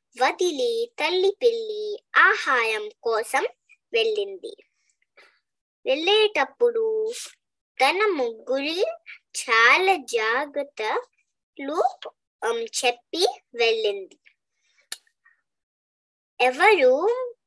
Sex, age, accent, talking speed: male, 20-39, native, 50 wpm